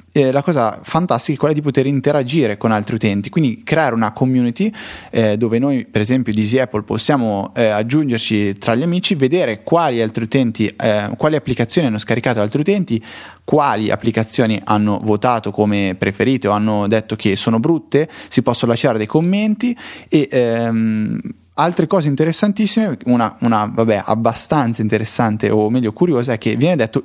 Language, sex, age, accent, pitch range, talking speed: Italian, male, 20-39, native, 110-150 Hz, 165 wpm